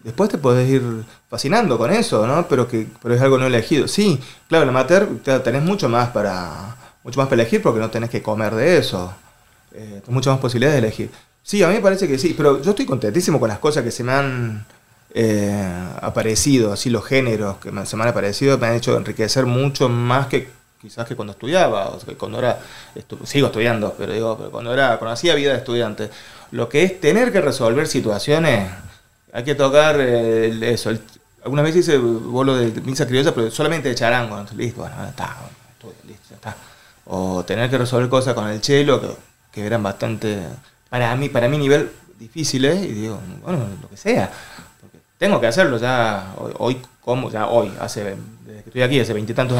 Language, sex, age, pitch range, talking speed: Spanish, male, 30-49, 110-140 Hz, 210 wpm